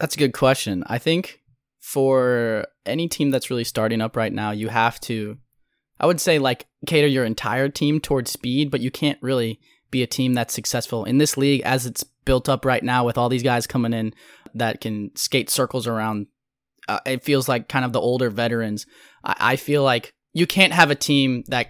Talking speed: 210 wpm